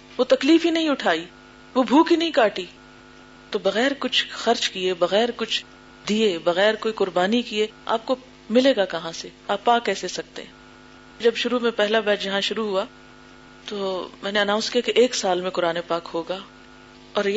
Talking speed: 185 wpm